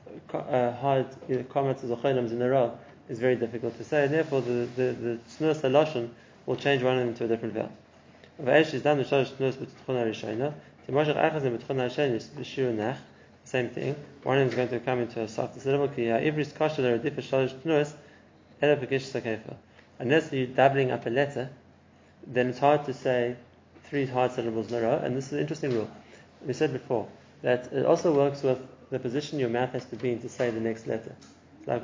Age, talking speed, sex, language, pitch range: 20-39, 155 wpm, male, English, 120-135 Hz